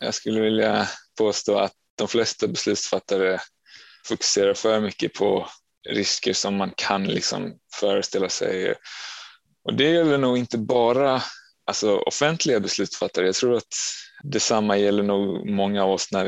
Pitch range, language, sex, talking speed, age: 105-130 Hz, Swedish, male, 135 wpm, 20-39